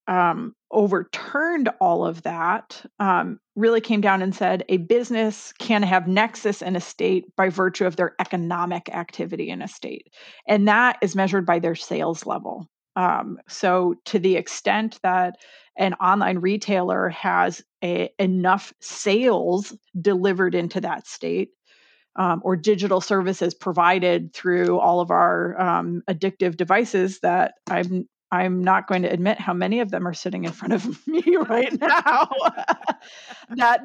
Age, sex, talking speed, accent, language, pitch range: 30-49, female, 150 wpm, American, English, 180-215 Hz